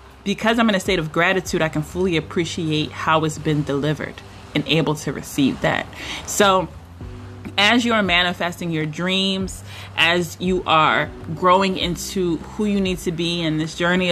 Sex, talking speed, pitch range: female, 170 wpm, 150-190 Hz